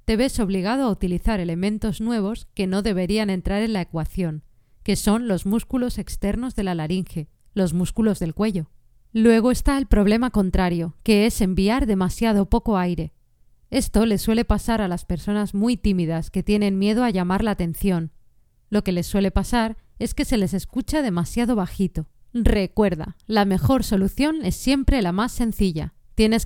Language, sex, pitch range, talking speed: Spanish, female, 185-230 Hz, 170 wpm